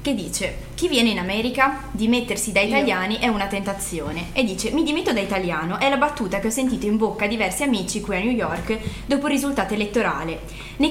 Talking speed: 210 wpm